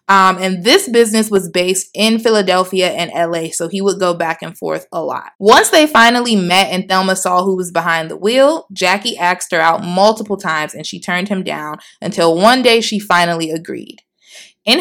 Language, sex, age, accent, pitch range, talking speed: English, female, 20-39, American, 175-225 Hz, 200 wpm